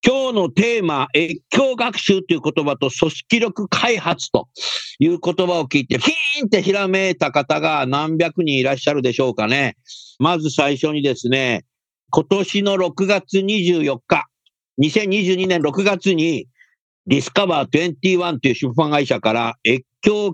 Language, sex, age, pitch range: Japanese, male, 50-69, 130-195 Hz